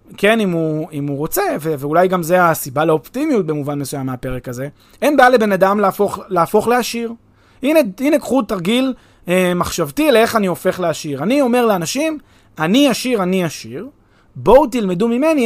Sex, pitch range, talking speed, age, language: male, 155-235 Hz, 165 wpm, 30-49, Hebrew